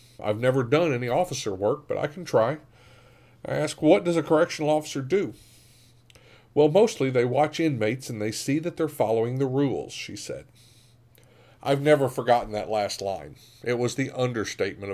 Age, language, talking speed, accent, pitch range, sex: 50-69, English, 175 wpm, American, 110-135 Hz, male